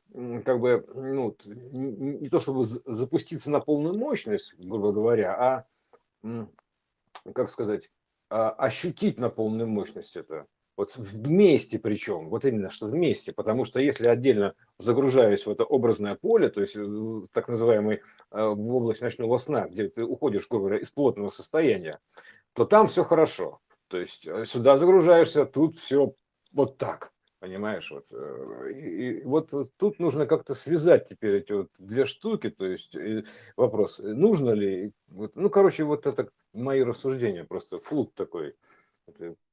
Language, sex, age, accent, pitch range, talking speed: Russian, male, 50-69, native, 110-160 Hz, 145 wpm